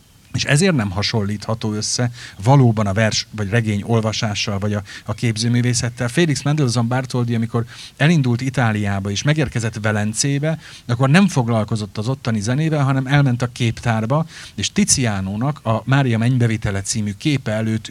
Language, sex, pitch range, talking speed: Hungarian, male, 105-140 Hz, 140 wpm